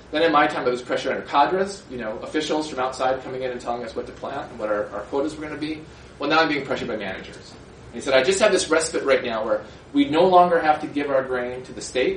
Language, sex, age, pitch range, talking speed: English, male, 30-49, 130-165 Hz, 295 wpm